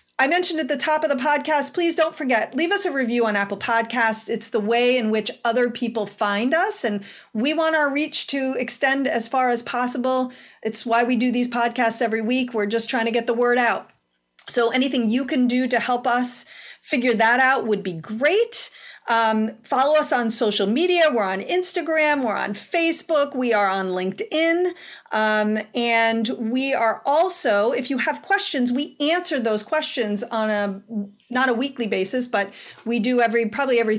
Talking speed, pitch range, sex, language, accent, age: 190 wpm, 220-285 Hz, female, English, American, 40-59